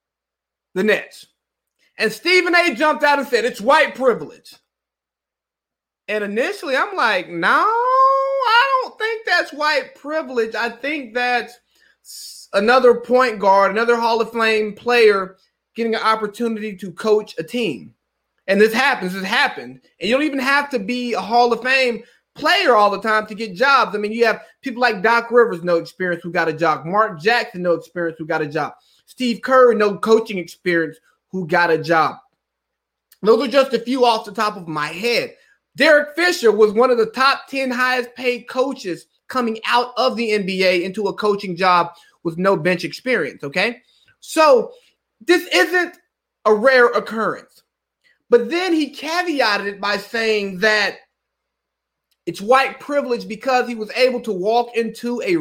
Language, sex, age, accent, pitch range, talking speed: English, male, 30-49, American, 205-265 Hz, 170 wpm